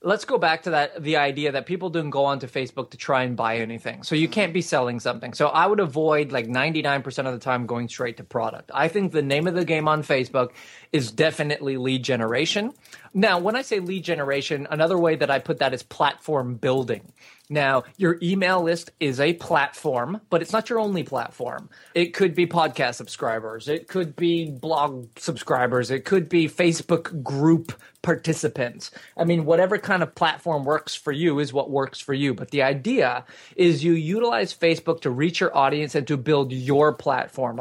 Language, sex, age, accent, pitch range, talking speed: English, male, 30-49, American, 135-170 Hz, 200 wpm